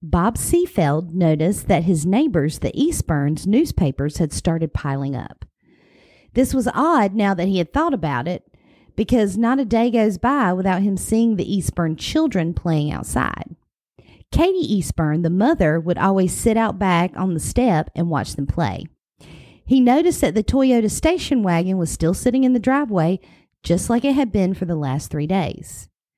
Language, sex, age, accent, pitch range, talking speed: English, female, 50-69, American, 170-245 Hz, 175 wpm